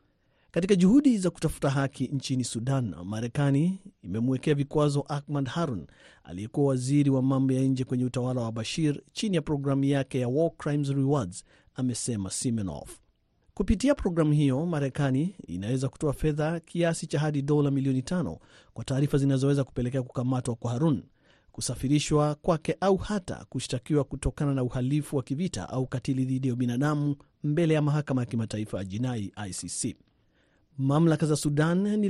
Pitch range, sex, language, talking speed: 125-150 Hz, male, Swahili, 150 wpm